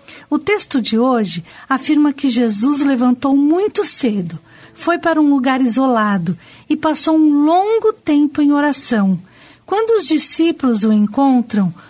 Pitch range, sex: 225-310 Hz, female